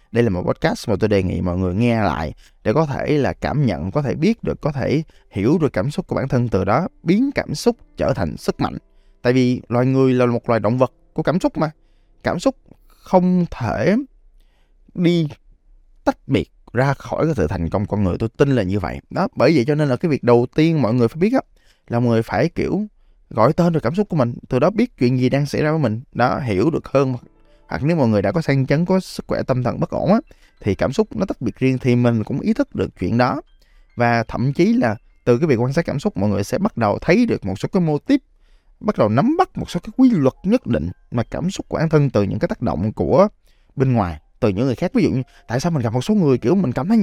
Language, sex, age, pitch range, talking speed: Vietnamese, male, 20-39, 115-175 Hz, 270 wpm